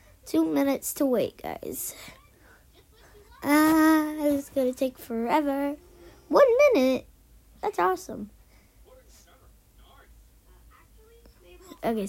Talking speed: 105 wpm